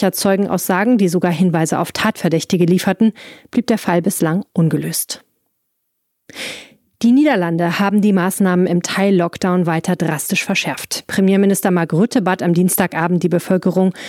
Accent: German